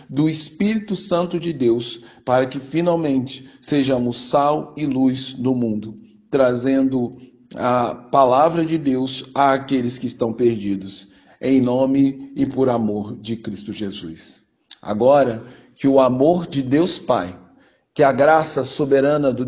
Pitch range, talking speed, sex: 115-135 Hz, 135 wpm, male